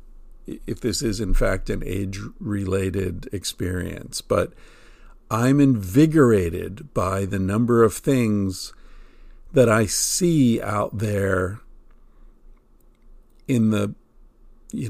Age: 50-69